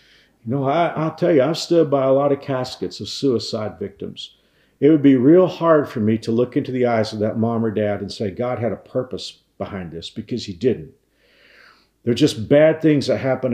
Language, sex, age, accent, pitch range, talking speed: English, male, 50-69, American, 110-140 Hz, 215 wpm